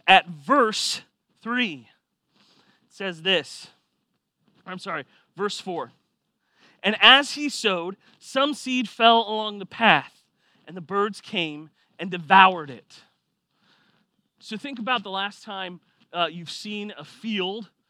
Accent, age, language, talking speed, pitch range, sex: American, 30-49, English, 125 wpm, 180-230 Hz, male